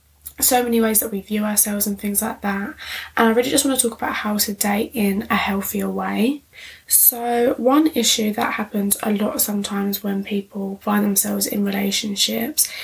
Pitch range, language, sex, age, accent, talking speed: 200-230 Hz, English, female, 10-29, British, 185 wpm